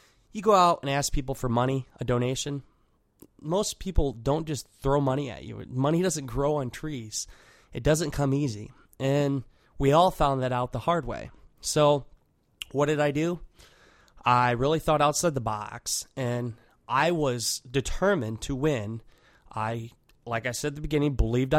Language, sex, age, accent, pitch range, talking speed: English, male, 20-39, American, 125-155 Hz, 170 wpm